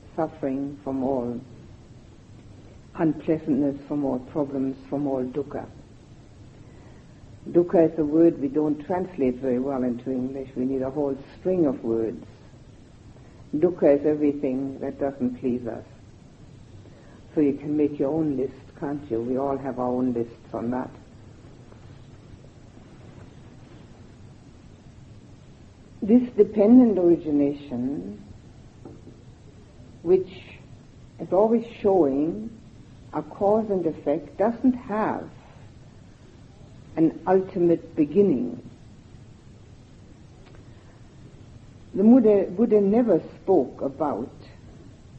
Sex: female